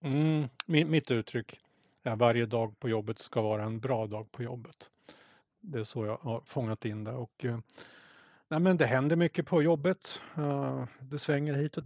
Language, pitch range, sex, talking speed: Swedish, 115-140 Hz, male, 180 wpm